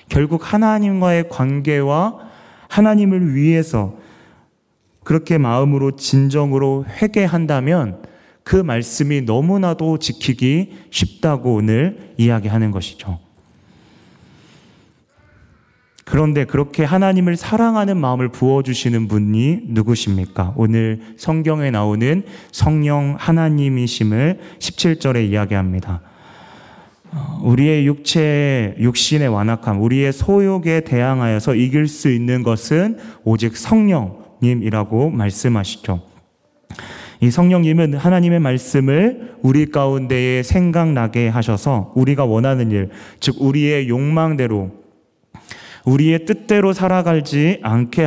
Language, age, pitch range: Korean, 30-49, 115-165 Hz